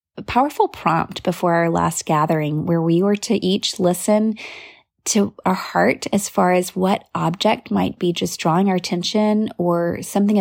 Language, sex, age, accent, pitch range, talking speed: English, female, 20-39, American, 175-215 Hz, 165 wpm